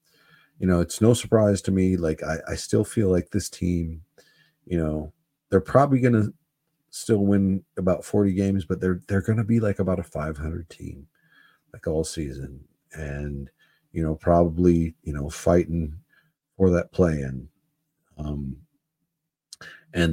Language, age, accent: English, 50-69, American